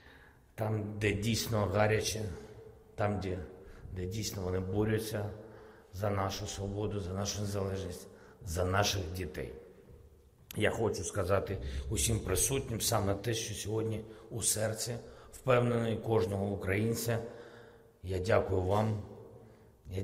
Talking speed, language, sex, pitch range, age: 110 wpm, Ukrainian, male, 85-110 Hz, 50-69